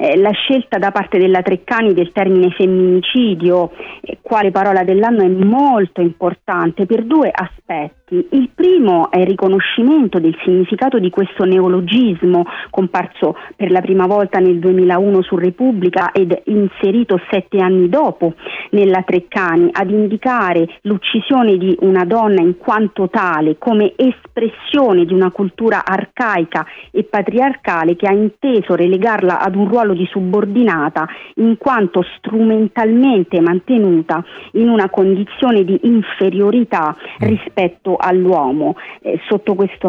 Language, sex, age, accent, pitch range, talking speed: Italian, female, 40-59, native, 180-215 Hz, 125 wpm